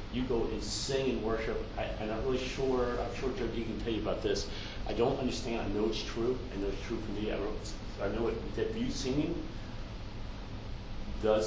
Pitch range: 100-115 Hz